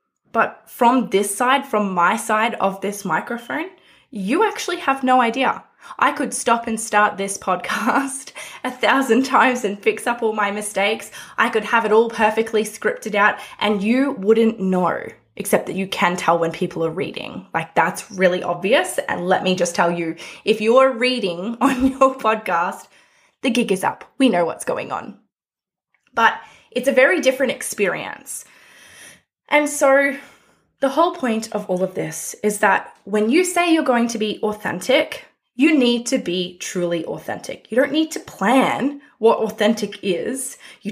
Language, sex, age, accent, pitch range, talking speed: English, female, 20-39, Australian, 205-275 Hz, 175 wpm